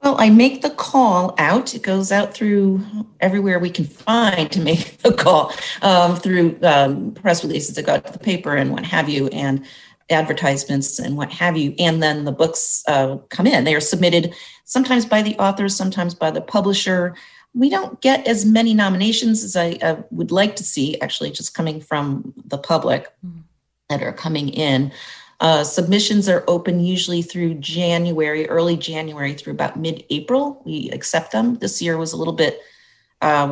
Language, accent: English, American